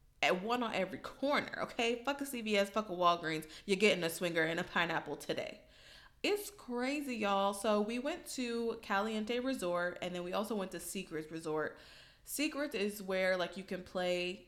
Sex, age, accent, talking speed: female, 20-39, American, 180 wpm